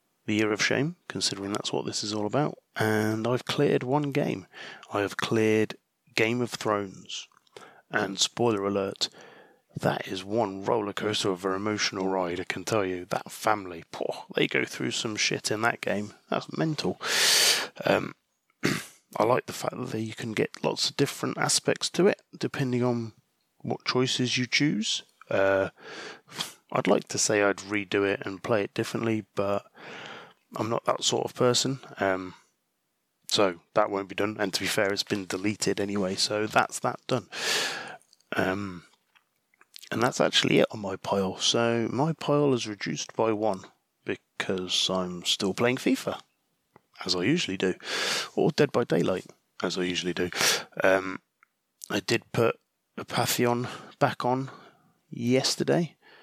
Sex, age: male, 20-39